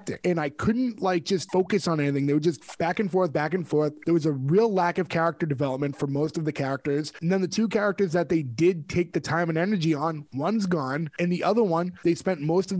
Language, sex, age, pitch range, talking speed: English, male, 20-39, 160-185 Hz, 255 wpm